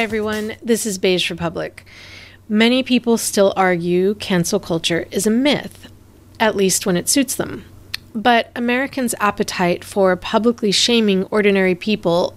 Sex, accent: female, American